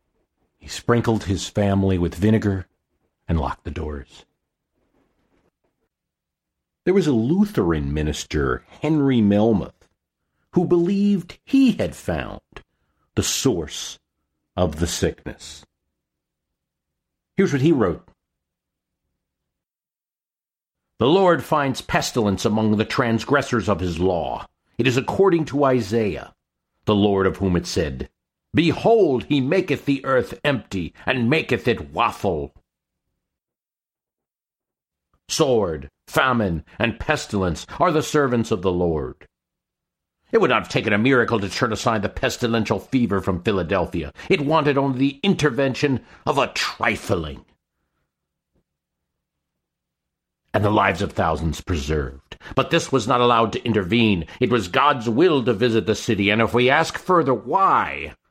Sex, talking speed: male, 125 wpm